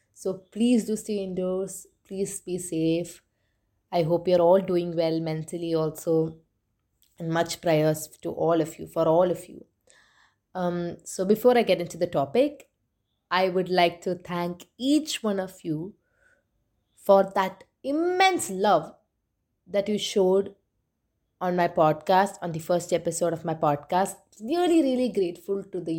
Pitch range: 165-210 Hz